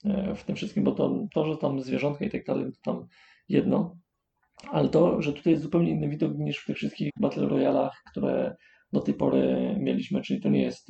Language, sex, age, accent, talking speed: Polish, male, 30-49, native, 210 wpm